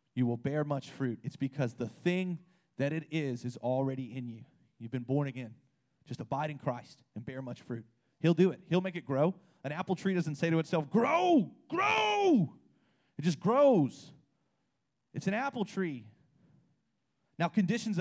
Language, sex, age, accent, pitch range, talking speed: English, male, 30-49, American, 140-195 Hz, 175 wpm